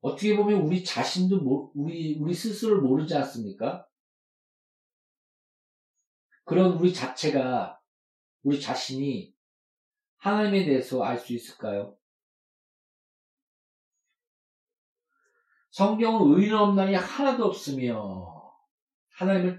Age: 40-59